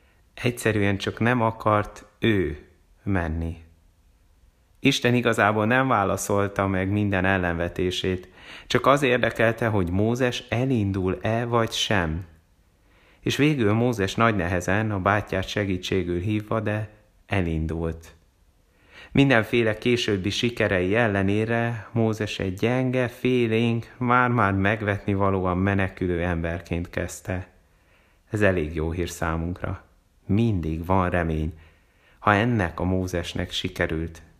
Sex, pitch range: male, 90-110 Hz